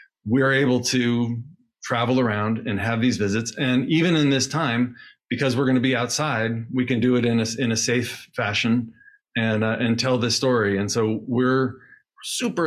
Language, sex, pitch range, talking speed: English, male, 110-130 Hz, 195 wpm